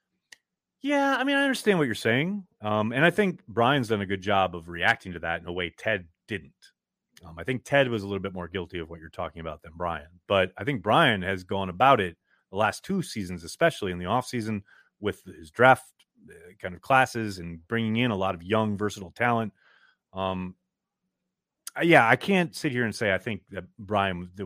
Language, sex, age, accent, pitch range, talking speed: English, male, 30-49, American, 90-125 Hz, 215 wpm